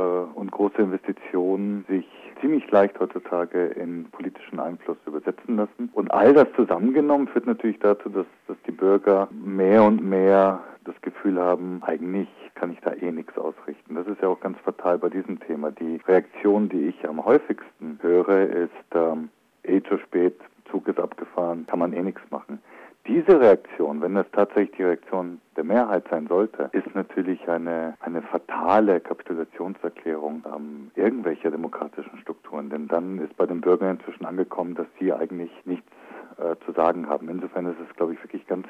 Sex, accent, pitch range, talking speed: male, German, 85-100 Hz, 150 wpm